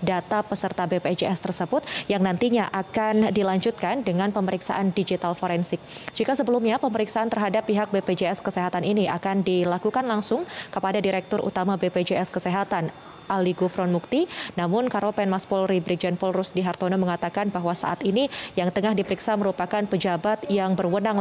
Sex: female